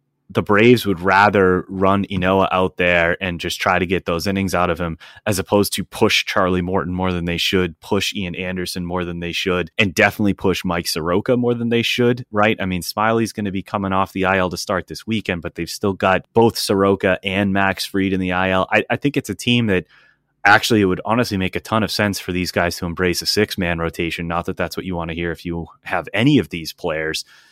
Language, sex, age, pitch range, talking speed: English, male, 30-49, 90-110 Hz, 240 wpm